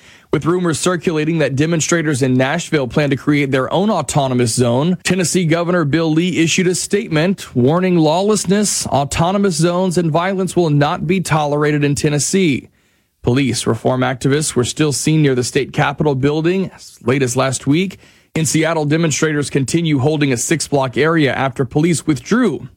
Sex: male